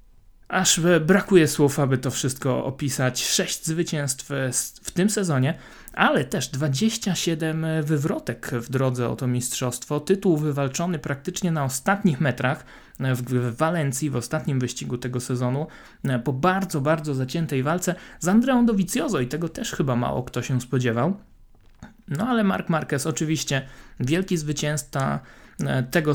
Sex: male